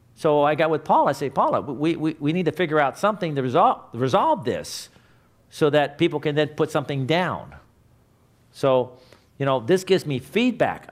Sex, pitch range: male, 125-175 Hz